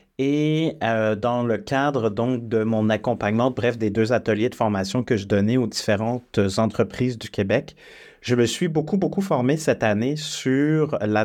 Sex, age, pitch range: male, 30-49, 110-130 Hz